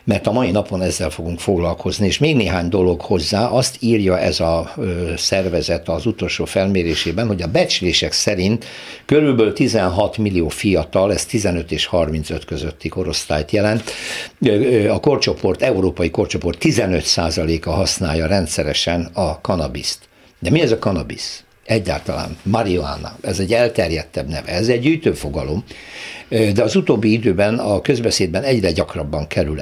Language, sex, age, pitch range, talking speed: Hungarian, male, 60-79, 85-110 Hz, 140 wpm